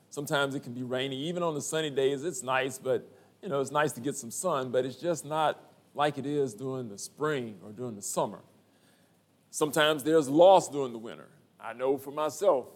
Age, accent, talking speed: 40-59, American, 210 wpm